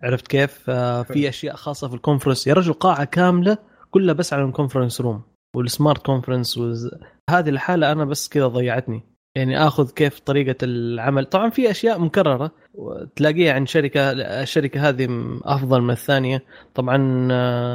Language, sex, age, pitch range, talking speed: Arabic, male, 20-39, 125-150 Hz, 145 wpm